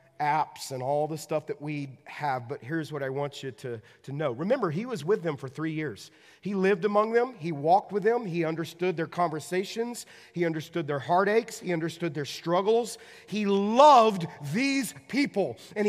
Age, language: 40-59, English